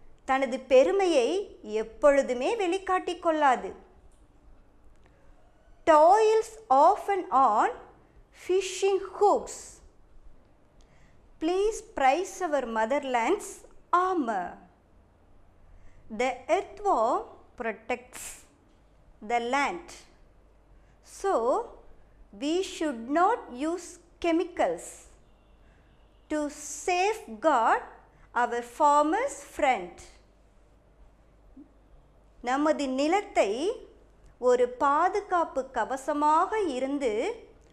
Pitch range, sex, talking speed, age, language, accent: 260-390 Hz, male, 60 wpm, 50-69, Tamil, native